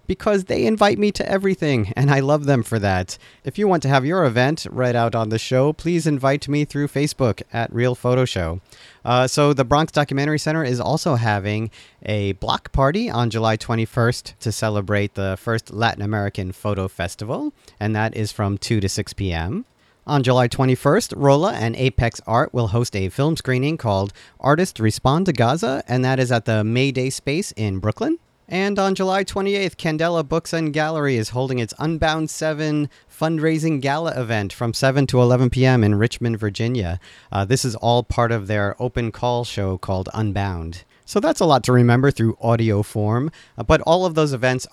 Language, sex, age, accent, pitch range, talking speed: English, male, 40-59, American, 110-155 Hz, 190 wpm